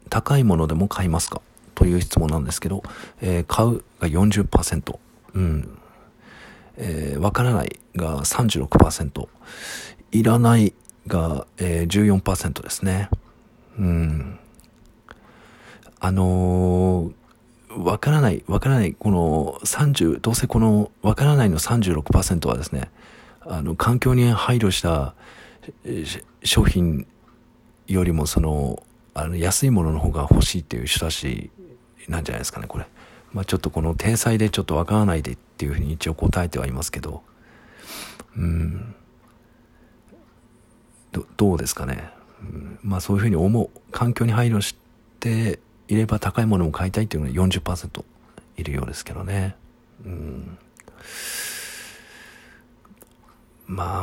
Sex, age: male, 50-69